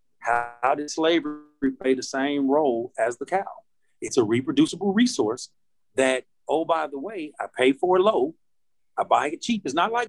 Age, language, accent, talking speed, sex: 40-59, English, American, 185 wpm, male